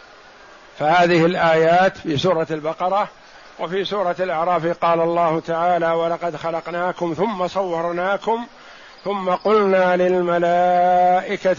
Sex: male